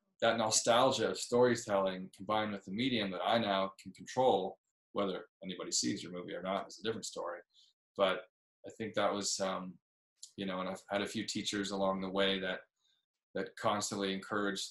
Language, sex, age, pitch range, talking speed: English, male, 20-39, 95-110 Hz, 185 wpm